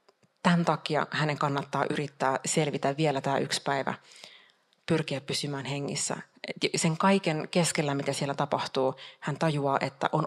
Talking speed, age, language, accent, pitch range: 135 wpm, 30-49, Finnish, native, 140-165 Hz